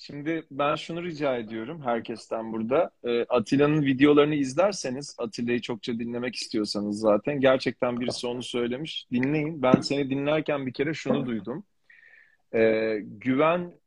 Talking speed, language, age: 130 wpm, Turkish, 40-59